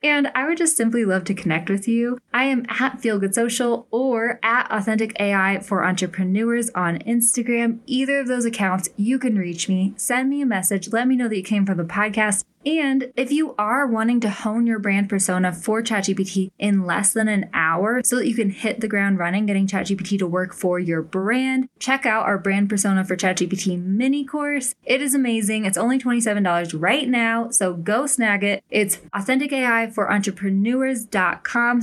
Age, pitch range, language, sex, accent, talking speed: 10-29, 190-240 Hz, English, female, American, 195 wpm